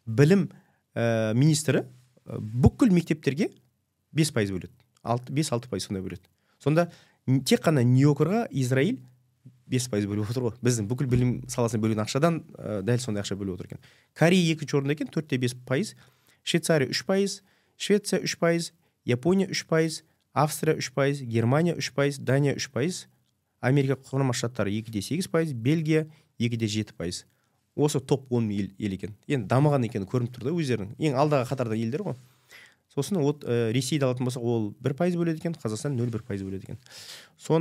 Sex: male